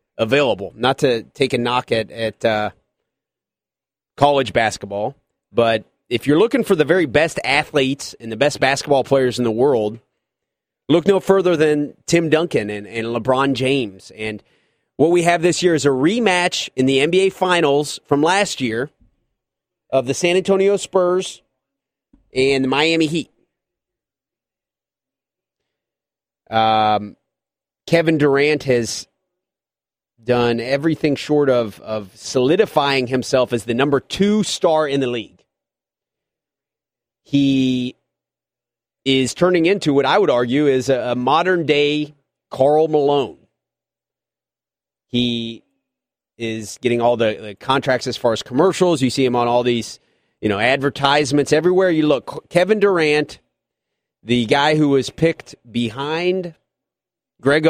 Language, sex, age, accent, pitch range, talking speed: English, male, 30-49, American, 120-160 Hz, 135 wpm